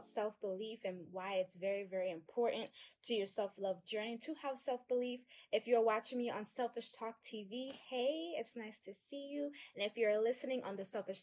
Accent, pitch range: American, 200-270 Hz